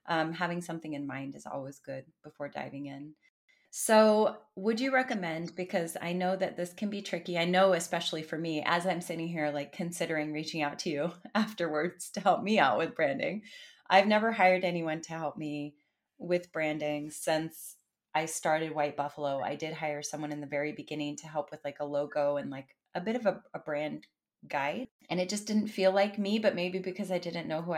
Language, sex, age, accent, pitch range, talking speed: English, female, 30-49, American, 155-190 Hz, 205 wpm